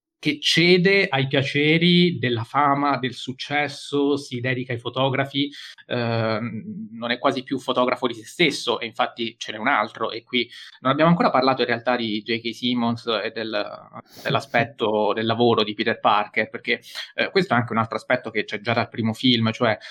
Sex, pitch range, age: male, 115-135 Hz, 20-39